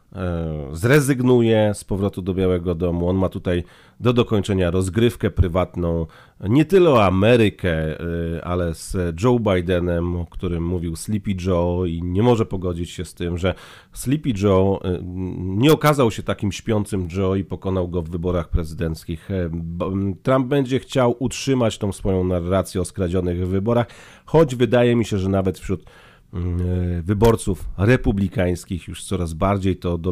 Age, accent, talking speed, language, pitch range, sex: 40-59, native, 145 wpm, Polish, 90-110 Hz, male